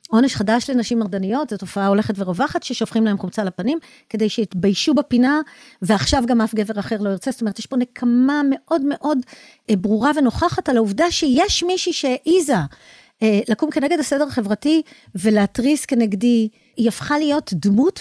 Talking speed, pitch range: 135 wpm, 200-260 Hz